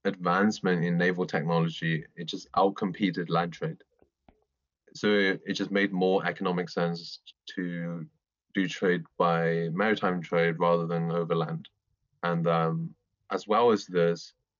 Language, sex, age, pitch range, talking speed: English, male, 20-39, 85-95 Hz, 125 wpm